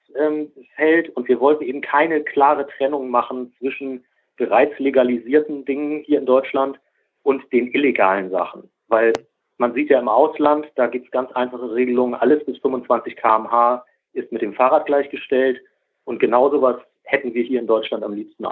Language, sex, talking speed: German, male, 165 wpm